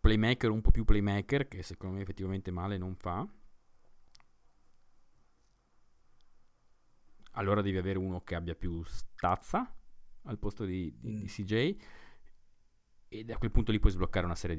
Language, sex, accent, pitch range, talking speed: Italian, male, native, 90-105 Hz, 140 wpm